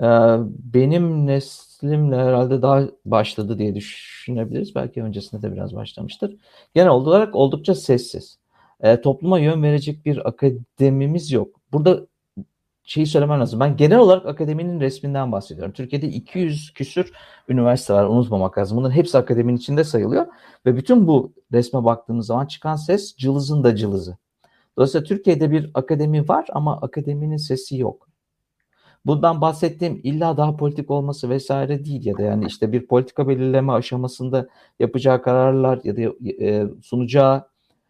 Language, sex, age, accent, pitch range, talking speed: Turkish, male, 50-69, native, 120-155 Hz, 135 wpm